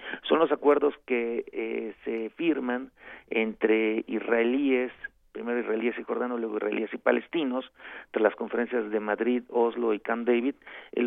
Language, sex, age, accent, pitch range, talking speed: Spanish, male, 40-59, Mexican, 115-135 Hz, 145 wpm